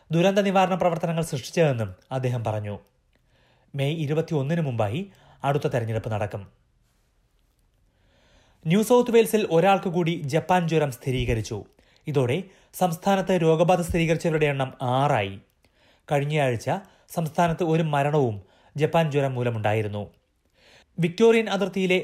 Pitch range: 125-175 Hz